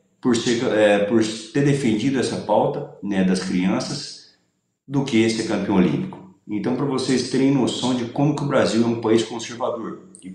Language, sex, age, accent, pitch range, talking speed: Portuguese, male, 40-59, Brazilian, 95-115 Hz, 160 wpm